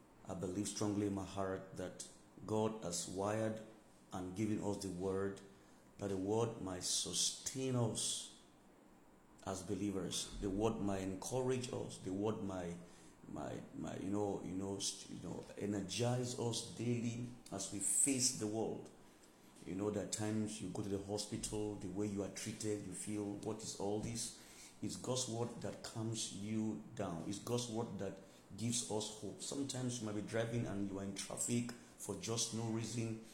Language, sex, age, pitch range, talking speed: English, male, 50-69, 100-130 Hz, 170 wpm